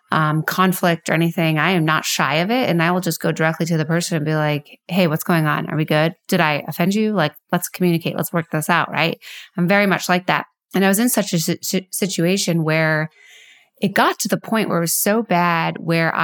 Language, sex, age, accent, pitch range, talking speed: English, female, 20-39, American, 165-195 Hz, 240 wpm